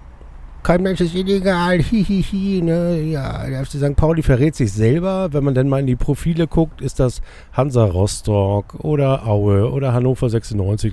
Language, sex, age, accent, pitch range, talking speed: German, male, 50-69, German, 105-145 Hz, 170 wpm